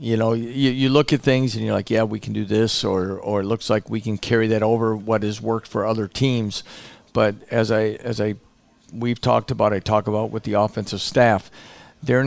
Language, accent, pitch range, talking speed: English, American, 105-120 Hz, 230 wpm